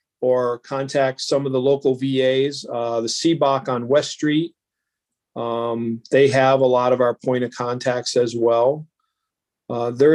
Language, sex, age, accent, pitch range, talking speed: English, male, 40-59, American, 120-150 Hz, 160 wpm